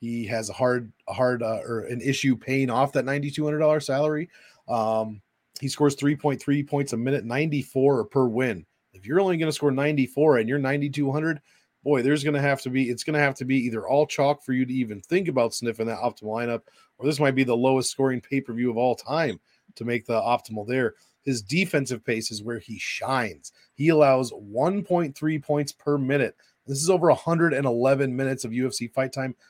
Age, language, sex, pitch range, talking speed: 30-49, English, male, 120-145 Hz, 205 wpm